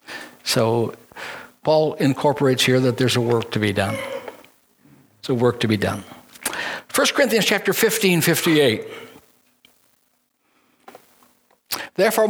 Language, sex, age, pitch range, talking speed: English, male, 60-79, 130-185 Hz, 105 wpm